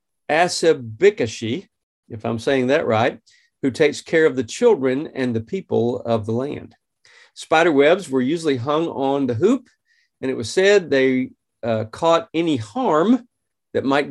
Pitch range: 120-165 Hz